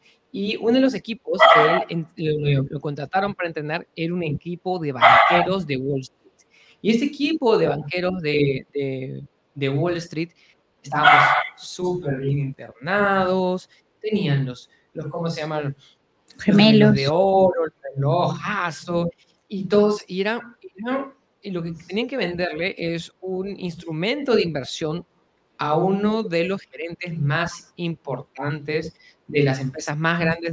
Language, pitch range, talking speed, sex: Spanish, 145-200 Hz, 150 wpm, male